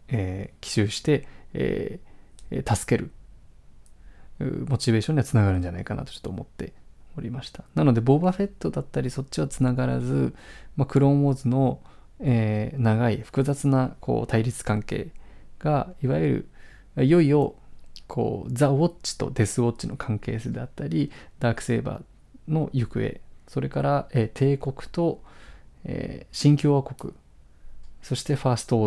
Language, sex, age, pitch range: Japanese, male, 20-39, 105-140 Hz